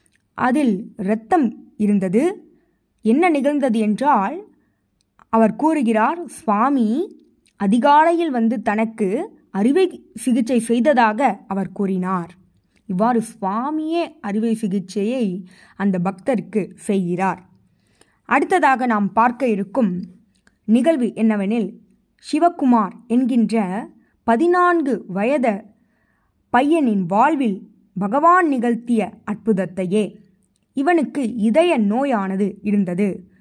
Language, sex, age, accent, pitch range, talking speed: Tamil, female, 20-39, native, 205-270 Hz, 75 wpm